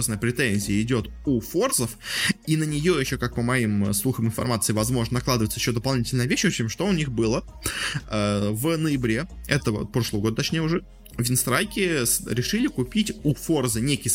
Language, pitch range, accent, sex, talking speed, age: Russian, 115-160 Hz, native, male, 155 wpm, 20-39